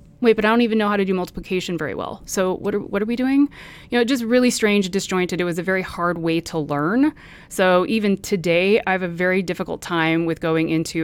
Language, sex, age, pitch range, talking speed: English, female, 30-49, 160-200 Hz, 245 wpm